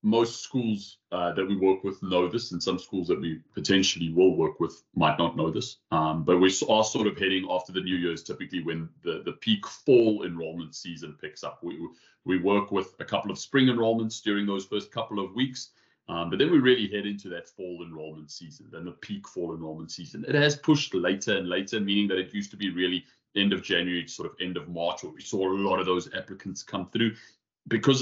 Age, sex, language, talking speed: 30-49, male, English, 230 wpm